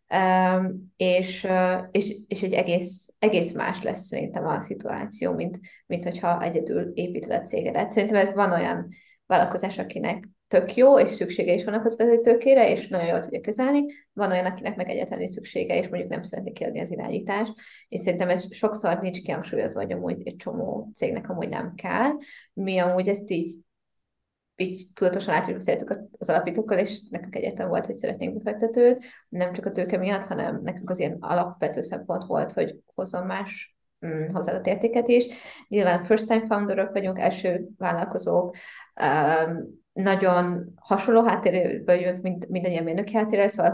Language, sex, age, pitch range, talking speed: Hungarian, female, 20-39, 180-220 Hz, 155 wpm